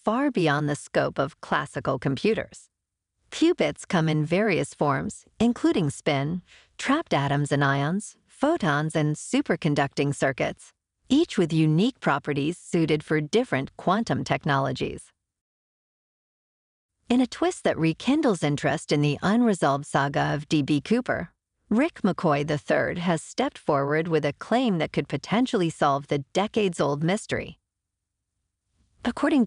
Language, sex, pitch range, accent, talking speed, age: English, female, 145-220 Hz, American, 125 wpm, 50-69